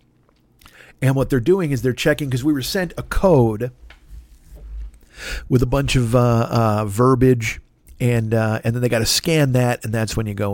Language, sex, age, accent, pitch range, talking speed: English, male, 50-69, American, 115-150 Hz, 195 wpm